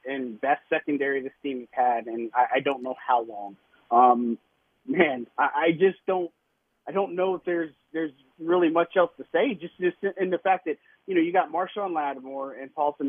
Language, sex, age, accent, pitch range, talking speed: English, male, 30-49, American, 135-160 Hz, 195 wpm